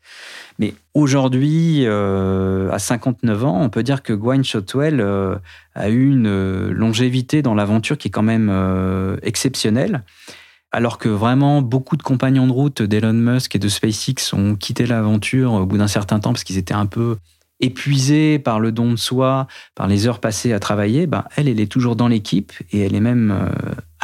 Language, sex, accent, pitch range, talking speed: French, male, French, 100-125 Hz, 185 wpm